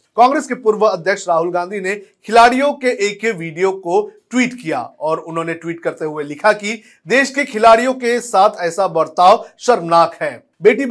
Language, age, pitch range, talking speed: Hindi, 40-59, 165-220 Hz, 165 wpm